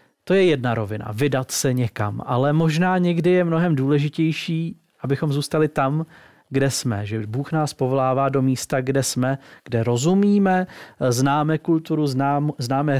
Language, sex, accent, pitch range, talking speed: Czech, male, native, 130-165 Hz, 145 wpm